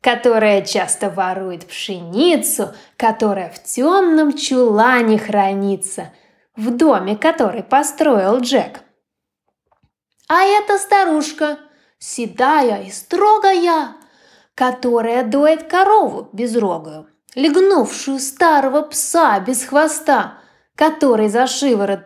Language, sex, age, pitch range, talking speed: Ukrainian, female, 20-39, 210-315 Hz, 85 wpm